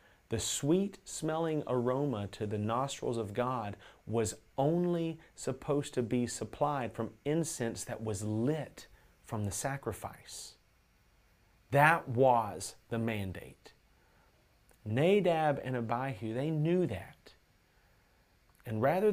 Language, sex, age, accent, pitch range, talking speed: English, male, 40-59, American, 105-140 Hz, 110 wpm